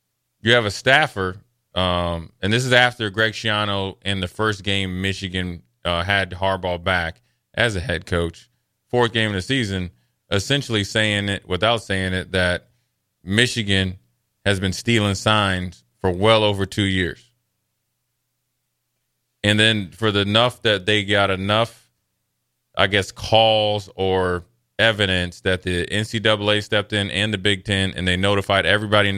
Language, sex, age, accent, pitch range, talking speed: English, male, 20-39, American, 95-115 Hz, 150 wpm